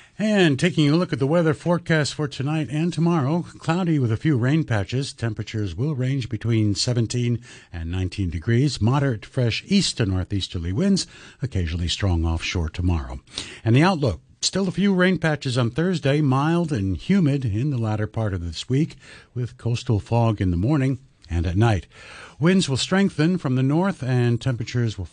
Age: 60-79